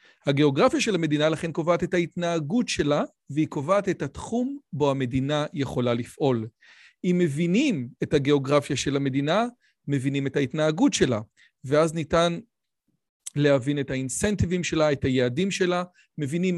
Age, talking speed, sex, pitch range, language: 40-59, 130 wpm, male, 145-185 Hz, Hebrew